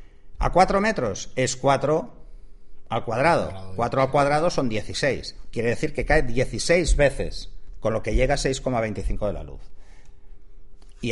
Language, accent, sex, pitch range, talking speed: Spanish, Spanish, male, 100-125 Hz, 150 wpm